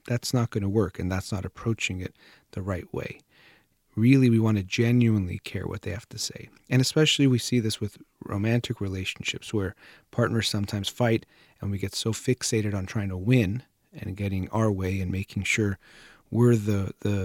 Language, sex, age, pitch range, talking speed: English, male, 40-59, 95-120 Hz, 190 wpm